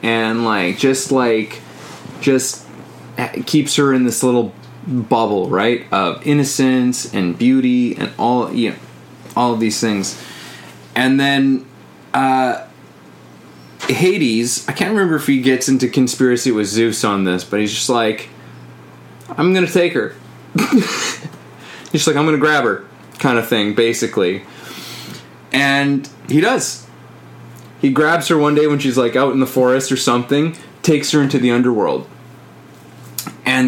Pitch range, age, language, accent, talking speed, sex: 110-140 Hz, 20-39, English, American, 150 wpm, male